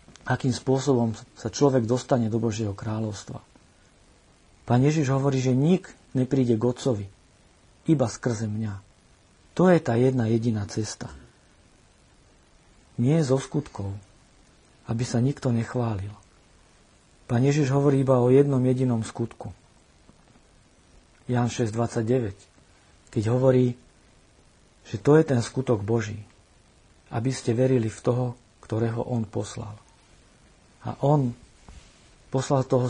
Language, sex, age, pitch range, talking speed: Slovak, male, 50-69, 110-135 Hz, 110 wpm